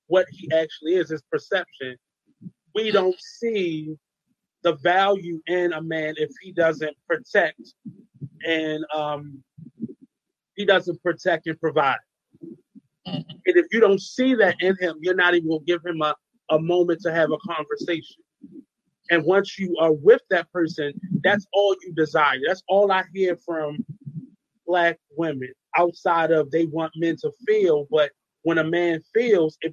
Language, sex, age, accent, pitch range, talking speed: English, male, 30-49, American, 160-195 Hz, 155 wpm